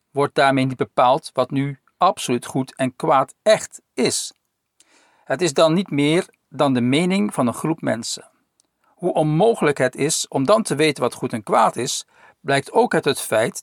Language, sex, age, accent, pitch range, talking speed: English, male, 50-69, Dutch, 130-165 Hz, 185 wpm